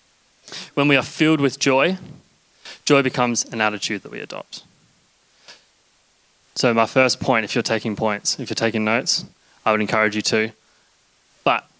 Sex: male